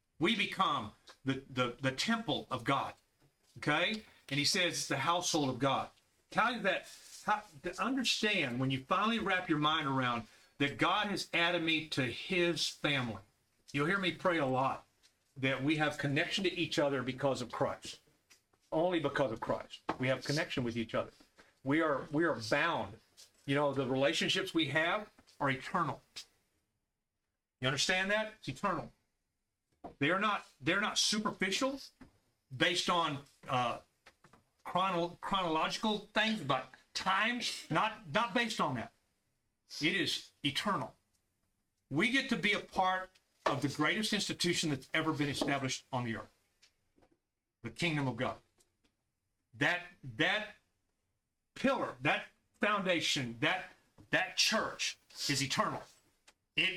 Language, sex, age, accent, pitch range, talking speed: English, male, 40-59, American, 130-185 Hz, 145 wpm